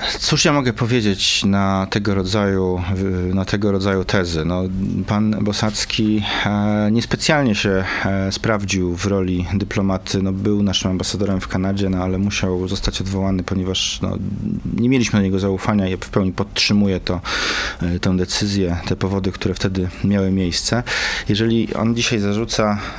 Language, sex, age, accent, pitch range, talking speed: Polish, male, 30-49, native, 95-105 Hz, 145 wpm